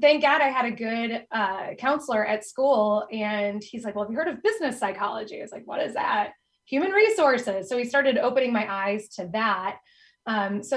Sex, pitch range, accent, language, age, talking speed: female, 210-245 Hz, American, English, 20-39, 210 wpm